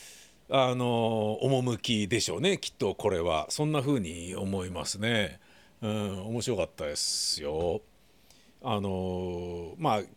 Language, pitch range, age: Japanese, 105-165 Hz, 60-79